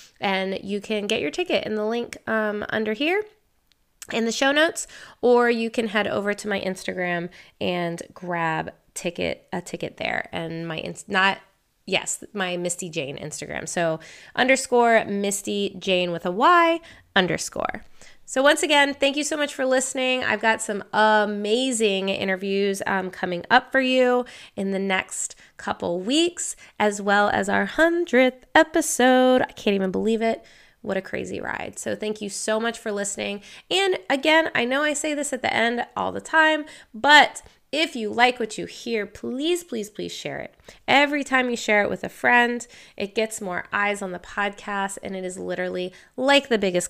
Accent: American